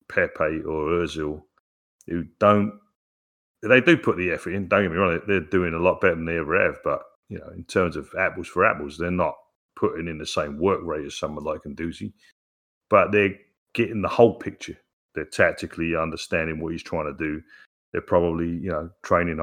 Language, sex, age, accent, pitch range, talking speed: English, male, 40-59, British, 85-110 Hz, 200 wpm